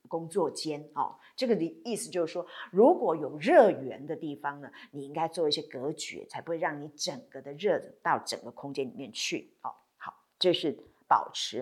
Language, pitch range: Chinese, 165-260 Hz